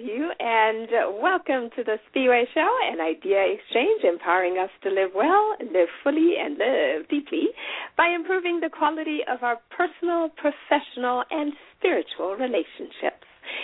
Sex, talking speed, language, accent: female, 130 wpm, English, American